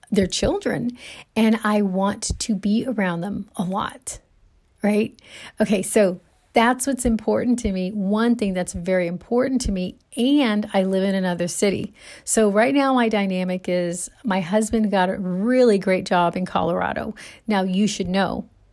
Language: English